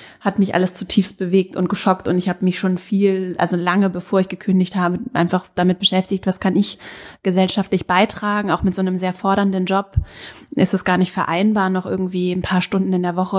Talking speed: 210 wpm